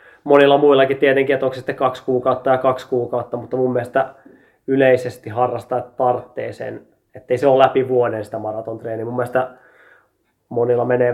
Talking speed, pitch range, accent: 165 wpm, 120-140 Hz, native